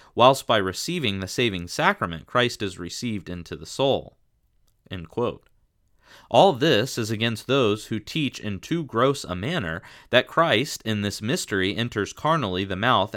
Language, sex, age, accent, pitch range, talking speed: English, male, 30-49, American, 95-120 Hz, 155 wpm